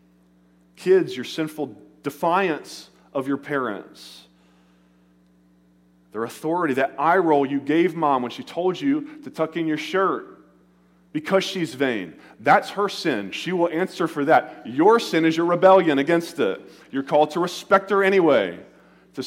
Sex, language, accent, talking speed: male, English, American, 155 wpm